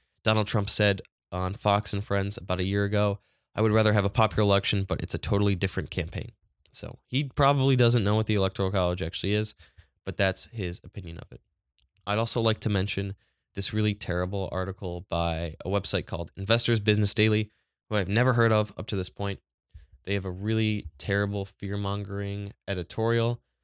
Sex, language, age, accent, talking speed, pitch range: male, English, 10-29, American, 190 wpm, 90-105 Hz